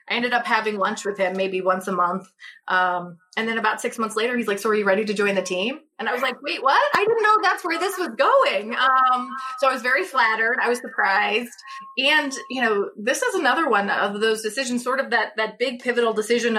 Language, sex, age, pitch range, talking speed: English, female, 20-39, 205-260 Hz, 240 wpm